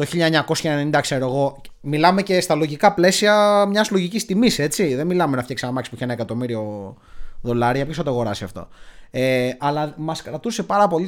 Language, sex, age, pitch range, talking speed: Greek, male, 20-39, 130-180 Hz, 190 wpm